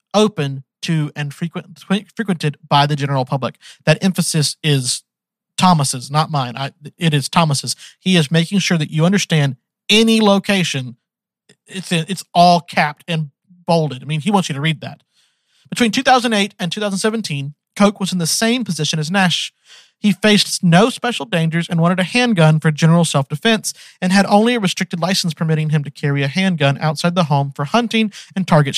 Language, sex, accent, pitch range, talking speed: English, male, American, 150-195 Hz, 175 wpm